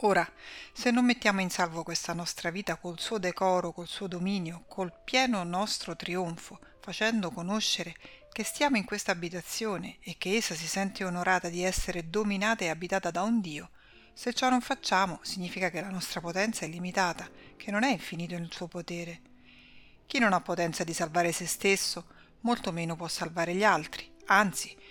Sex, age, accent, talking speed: female, 40-59, native, 175 wpm